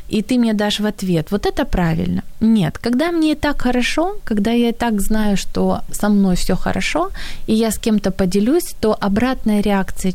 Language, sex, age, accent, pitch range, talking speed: Ukrainian, female, 20-39, native, 190-235 Hz, 190 wpm